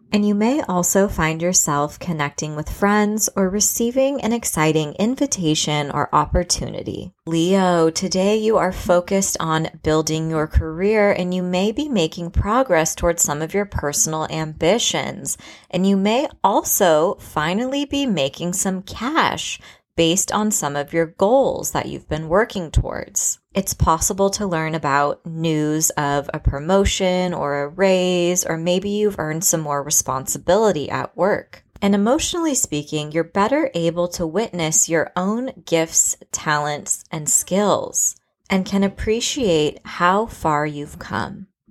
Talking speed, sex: 140 wpm, female